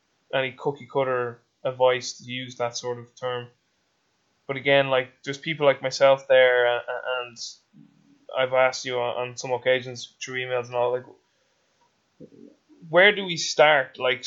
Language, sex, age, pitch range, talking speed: English, male, 20-39, 125-145 Hz, 155 wpm